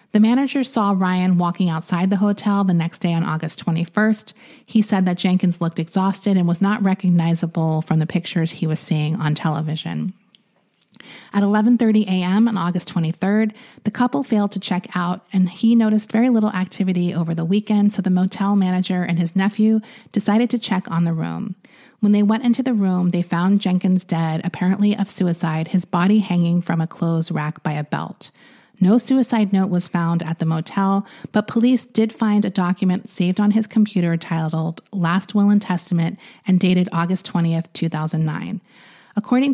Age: 30-49